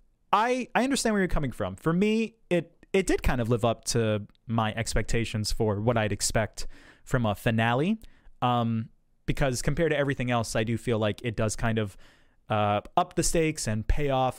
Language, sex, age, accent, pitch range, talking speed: English, male, 20-39, American, 115-150 Hz, 195 wpm